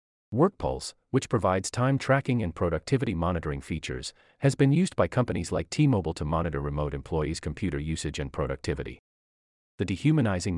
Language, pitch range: English, 75-125 Hz